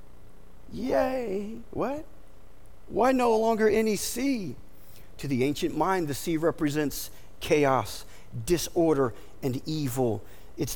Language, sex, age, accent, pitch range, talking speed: English, male, 50-69, American, 150-215 Hz, 105 wpm